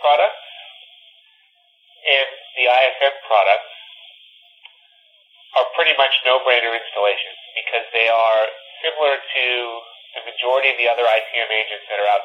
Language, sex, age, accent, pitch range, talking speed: English, male, 30-49, American, 110-145 Hz, 120 wpm